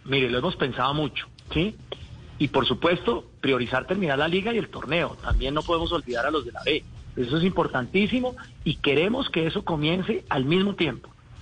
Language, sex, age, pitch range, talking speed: Spanish, male, 40-59, 135-185 Hz, 190 wpm